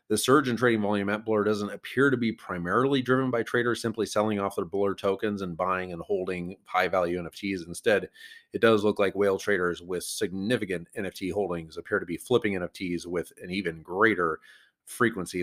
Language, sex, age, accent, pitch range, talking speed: English, male, 30-49, American, 90-105 Hz, 185 wpm